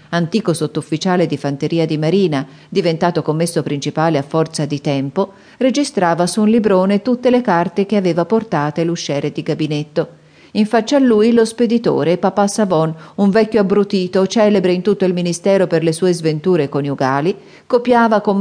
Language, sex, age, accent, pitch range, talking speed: Italian, female, 40-59, native, 155-205 Hz, 160 wpm